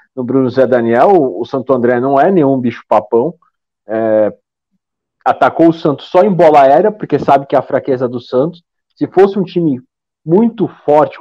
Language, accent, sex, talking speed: Portuguese, Brazilian, male, 175 wpm